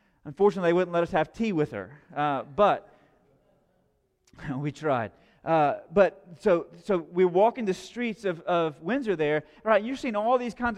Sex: male